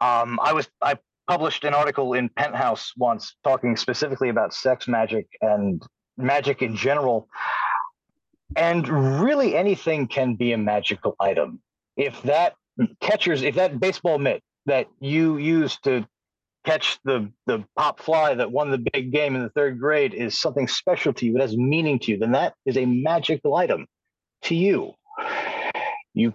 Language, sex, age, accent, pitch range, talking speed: English, male, 40-59, American, 125-165 Hz, 160 wpm